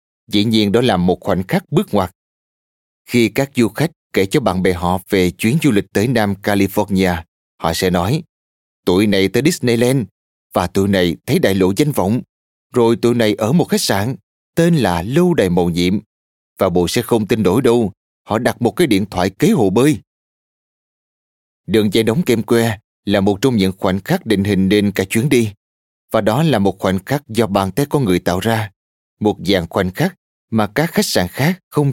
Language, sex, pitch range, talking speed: Vietnamese, male, 95-120 Hz, 205 wpm